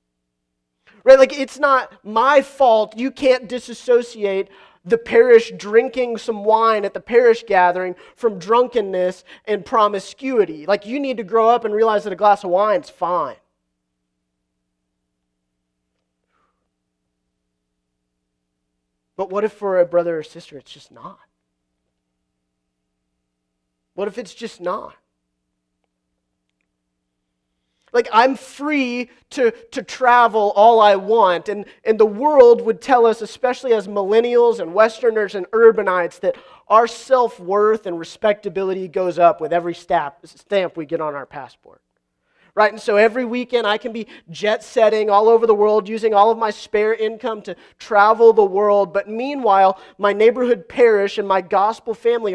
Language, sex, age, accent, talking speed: English, male, 30-49, American, 140 wpm